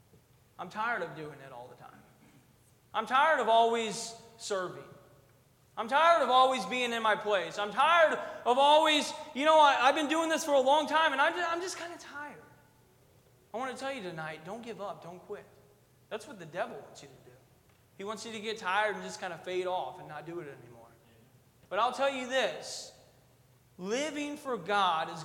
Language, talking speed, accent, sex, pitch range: English, 205 wpm, American, male, 160-260 Hz